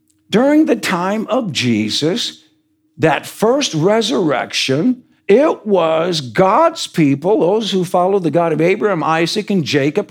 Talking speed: 130 wpm